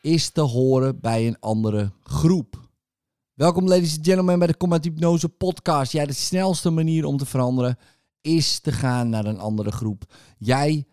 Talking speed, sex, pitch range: 170 wpm, male, 105-140 Hz